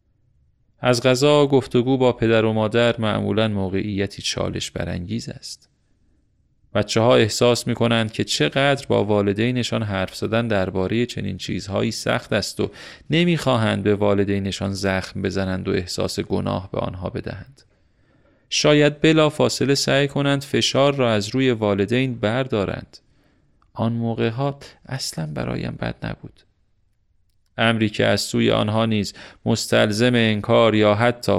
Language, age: Persian, 30-49